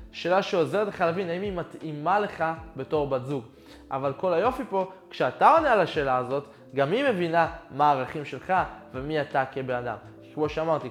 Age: 20-39